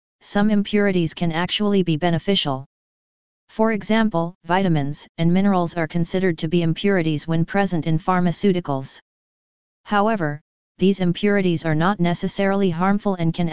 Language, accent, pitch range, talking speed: English, American, 160-195 Hz, 130 wpm